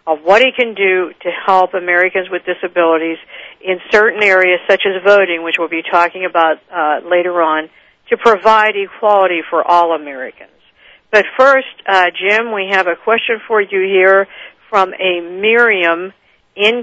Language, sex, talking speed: English, female, 160 wpm